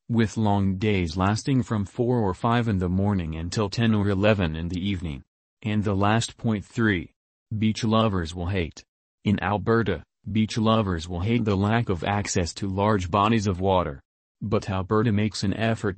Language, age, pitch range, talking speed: English, 40-59, 95-115 Hz, 175 wpm